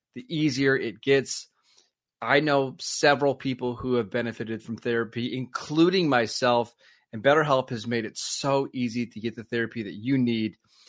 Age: 30-49